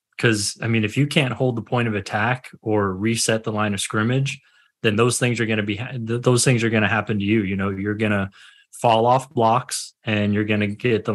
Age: 20-39